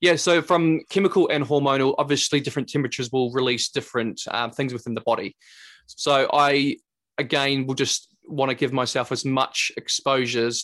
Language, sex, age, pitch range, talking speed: English, male, 20-39, 120-140 Hz, 165 wpm